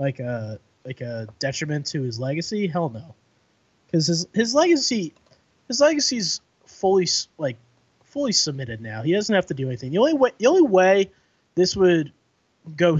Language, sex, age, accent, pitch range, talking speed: English, male, 20-39, American, 130-175 Hz, 165 wpm